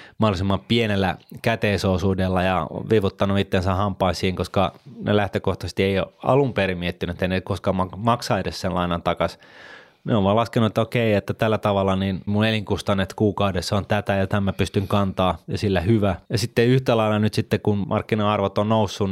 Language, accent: Finnish, native